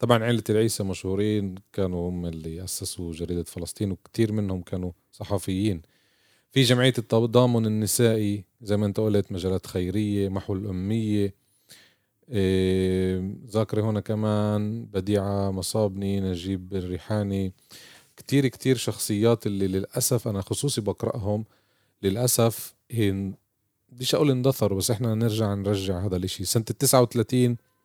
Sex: male